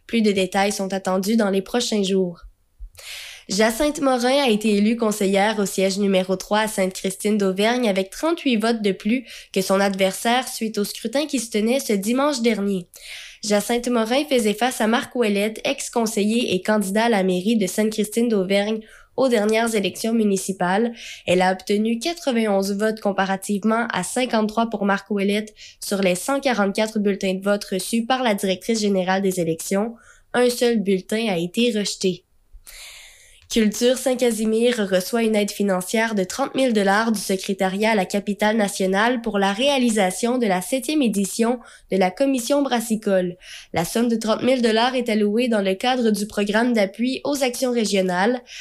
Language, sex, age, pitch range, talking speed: French, female, 20-39, 195-240 Hz, 160 wpm